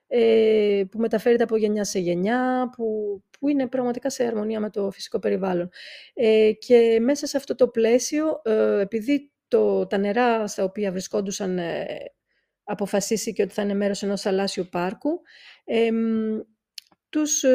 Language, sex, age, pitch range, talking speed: Greek, female, 40-59, 190-235 Hz, 125 wpm